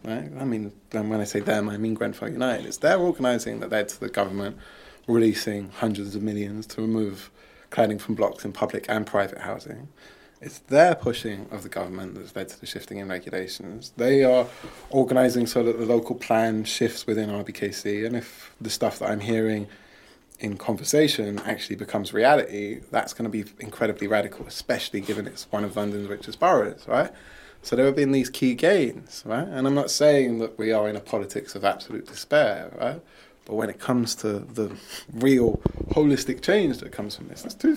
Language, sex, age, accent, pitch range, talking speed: English, male, 20-39, British, 105-125 Hz, 195 wpm